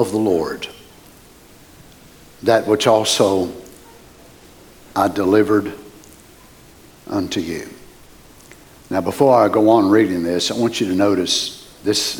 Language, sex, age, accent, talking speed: English, male, 60-79, American, 115 wpm